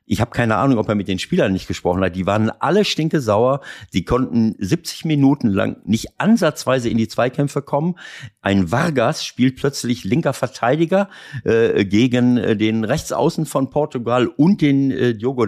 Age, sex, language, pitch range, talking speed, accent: 50-69, male, German, 110-140 Hz, 170 wpm, German